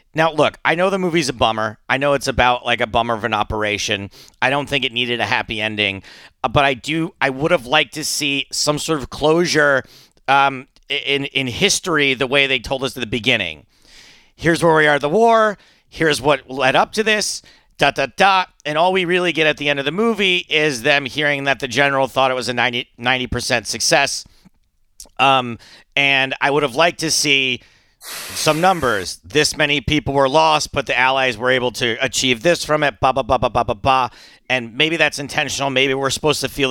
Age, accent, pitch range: 40-59, American, 125-155 Hz